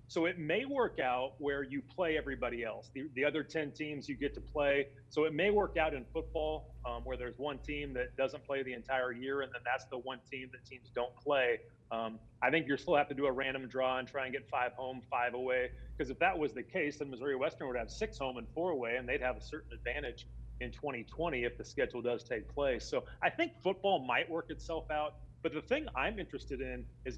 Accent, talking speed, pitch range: American, 245 wpm, 130-165 Hz